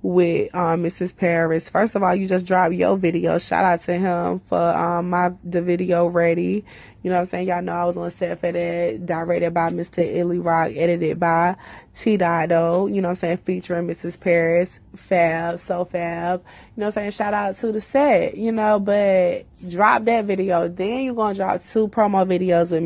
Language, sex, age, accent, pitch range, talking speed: English, female, 20-39, American, 170-195 Hz, 205 wpm